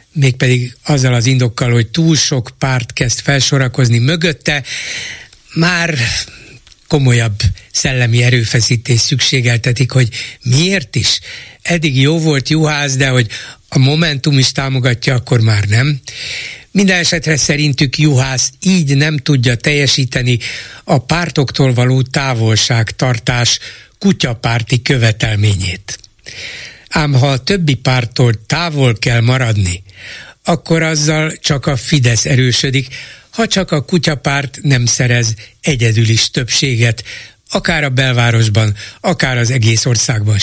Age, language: 60-79, Hungarian